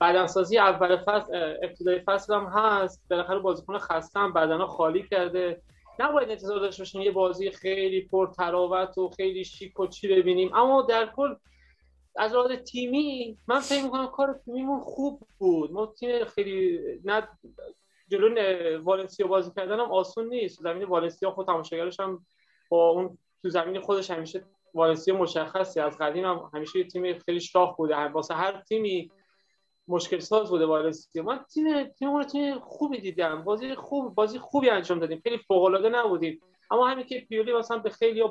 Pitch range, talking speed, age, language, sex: 180-220 Hz, 160 wpm, 30-49, Persian, male